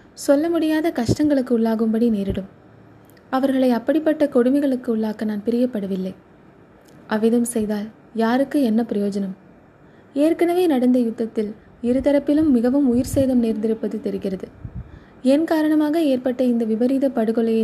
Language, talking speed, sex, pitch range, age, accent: Tamil, 105 wpm, female, 220-280 Hz, 20-39, native